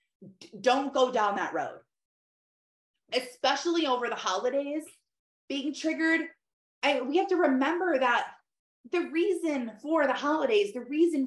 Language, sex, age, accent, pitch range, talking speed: English, female, 20-39, American, 210-320 Hz, 120 wpm